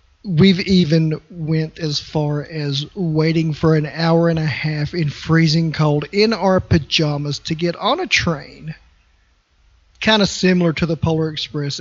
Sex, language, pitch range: male, English, 145-170 Hz